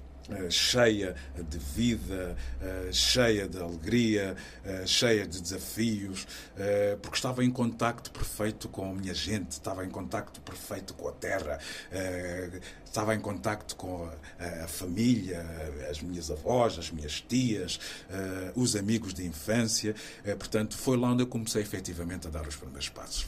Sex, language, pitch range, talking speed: male, Portuguese, 95-115 Hz, 135 wpm